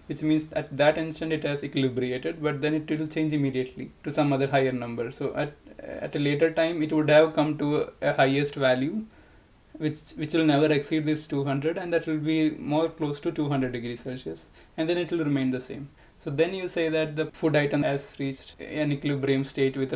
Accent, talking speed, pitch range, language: Indian, 215 wpm, 135-155 Hz, English